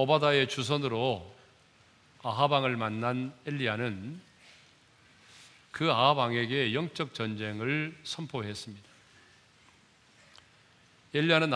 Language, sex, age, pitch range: Korean, male, 40-59, 115-150 Hz